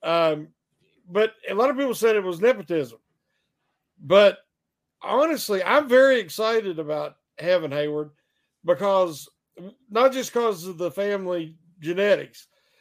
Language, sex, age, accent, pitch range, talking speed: English, male, 50-69, American, 170-230 Hz, 120 wpm